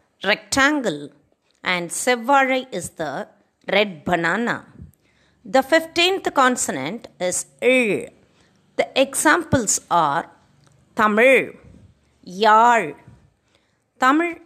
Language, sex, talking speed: Tamil, female, 75 wpm